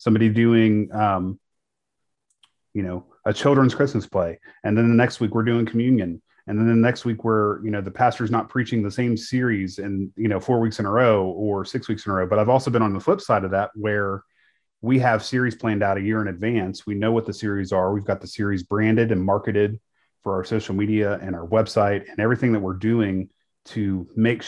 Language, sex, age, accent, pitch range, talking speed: English, male, 30-49, American, 100-115 Hz, 230 wpm